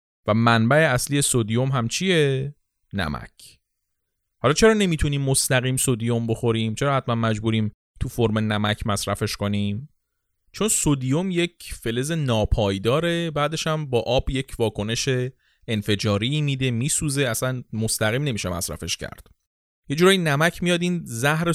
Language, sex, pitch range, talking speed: Persian, male, 100-145 Hz, 125 wpm